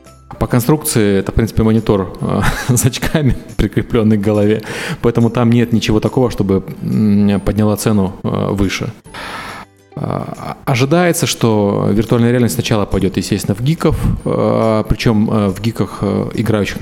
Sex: male